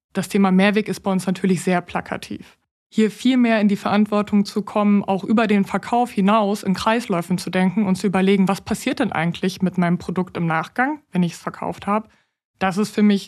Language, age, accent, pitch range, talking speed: German, 20-39, German, 190-220 Hz, 215 wpm